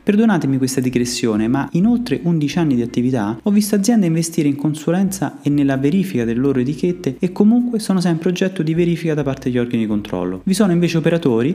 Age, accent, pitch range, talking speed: 30-49, native, 120-180 Hz, 205 wpm